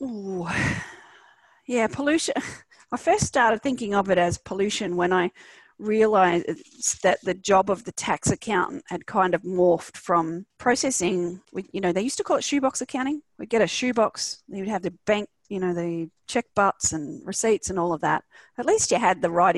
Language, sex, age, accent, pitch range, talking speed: English, female, 40-59, Australian, 175-225 Hz, 185 wpm